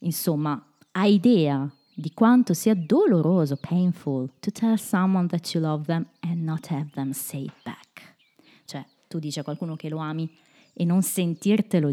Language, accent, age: Italian, native, 20-39